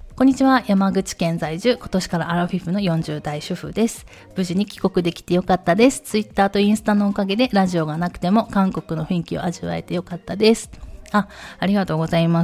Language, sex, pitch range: Japanese, female, 170-230 Hz